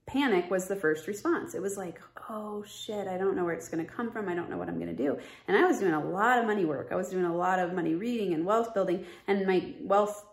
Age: 30-49